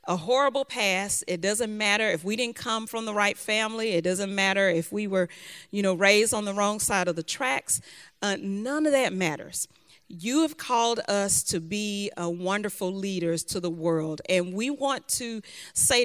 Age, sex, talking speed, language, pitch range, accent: 40-59, female, 195 wpm, English, 175-220 Hz, American